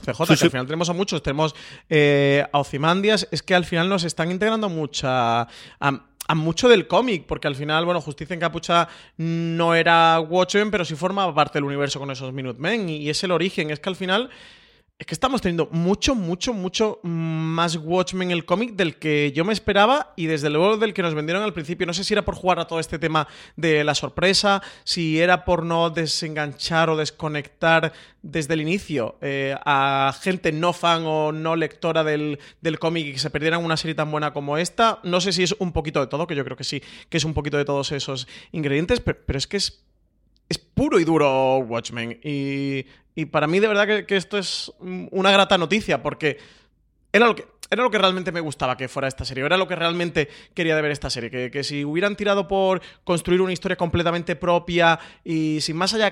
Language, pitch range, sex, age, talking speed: Spanish, 150-180 Hz, male, 30-49, 215 wpm